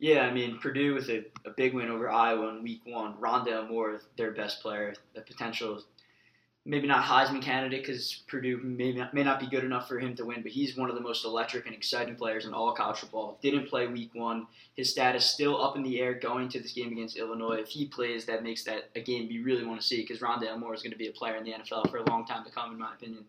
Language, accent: English, American